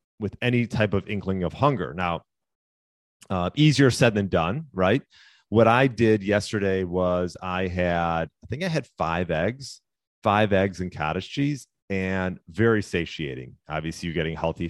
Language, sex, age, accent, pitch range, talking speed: English, male, 30-49, American, 85-105 Hz, 160 wpm